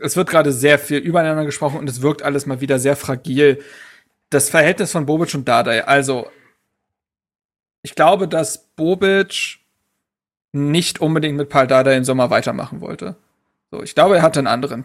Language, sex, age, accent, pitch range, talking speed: German, male, 40-59, German, 145-170 Hz, 170 wpm